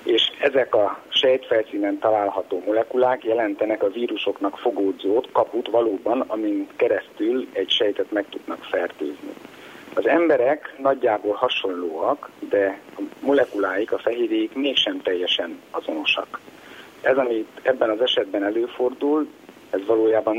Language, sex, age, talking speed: Hungarian, male, 60-79, 115 wpm